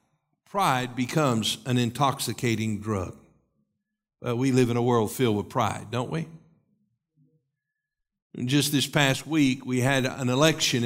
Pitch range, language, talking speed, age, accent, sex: 120-185 Hz, English, 140 wpm, 60-79, American, male